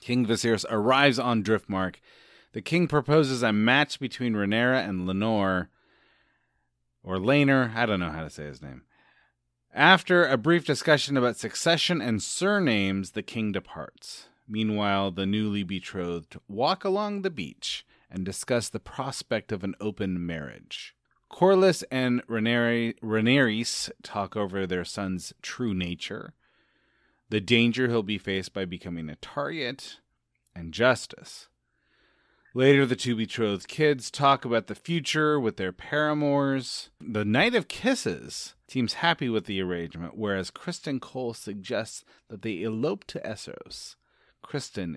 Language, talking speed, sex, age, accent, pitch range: English, 135 wpm, male, 30-49, American, 95-135 Hz